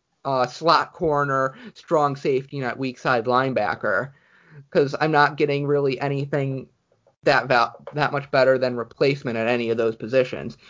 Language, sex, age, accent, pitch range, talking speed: English, male, 30-49, American, 125-155 Hz, 150 wpm